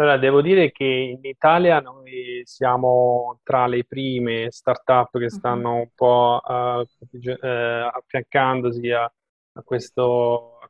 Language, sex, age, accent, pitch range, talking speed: Italian, male, 20-39, native, 120-130 Hz, 110 wpm